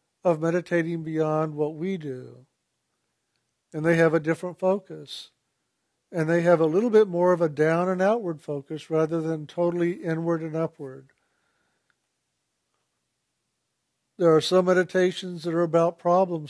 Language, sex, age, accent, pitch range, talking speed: English, male, 50-69, American, 150-190 Hz, 140 wpm